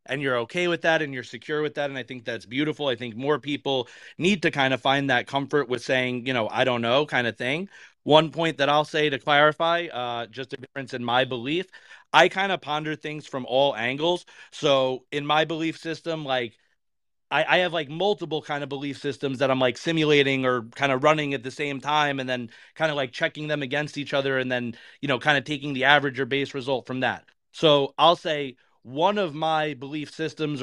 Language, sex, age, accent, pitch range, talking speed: English, male, 30-49, American, 130-160 Hz, 230 wpm